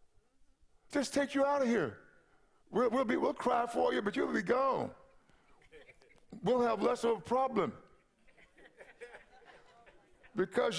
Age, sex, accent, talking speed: 50-69, male, American, 135 wpm